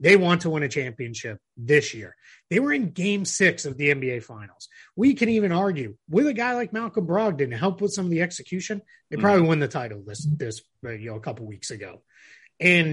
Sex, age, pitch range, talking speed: male, 30-49, 135-190 Hz, 225 wpm